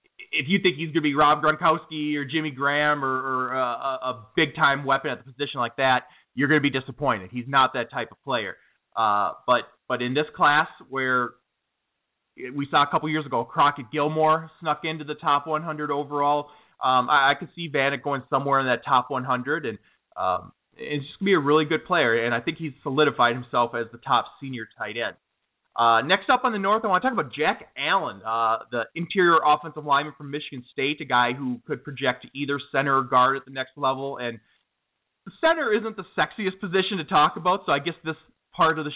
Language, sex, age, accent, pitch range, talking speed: English, male, 20-39, American, 130-155 Hz, 215 wpm